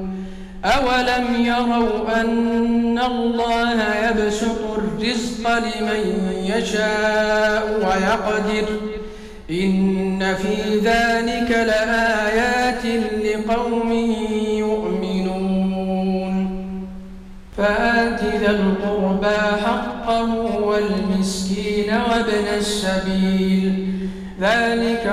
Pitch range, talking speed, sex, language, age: 195-230 Hz, 55 wpm, male, Arabic, 50-69